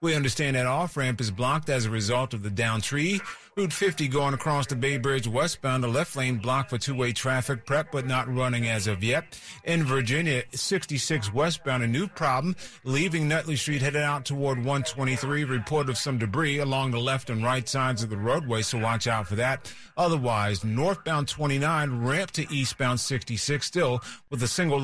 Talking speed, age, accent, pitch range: 190 wpm, 40-59, American, 125-150 Hz